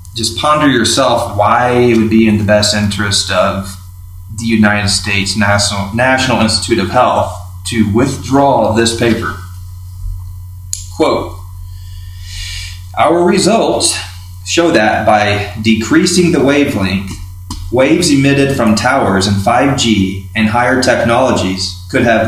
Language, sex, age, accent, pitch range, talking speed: English, male, 30-49, American, 90-115 Hz, 120 wpm